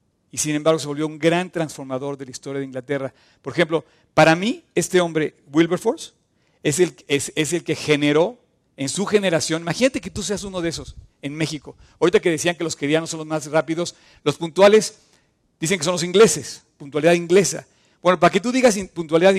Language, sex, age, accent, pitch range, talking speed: Spanish, male, 50-69, Mexican, 150-185 Hz, 190 wpm